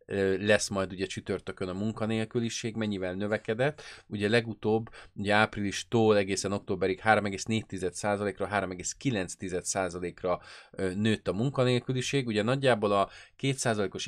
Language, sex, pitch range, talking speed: Hungarian, male, 95-110 Hz, 100 wpm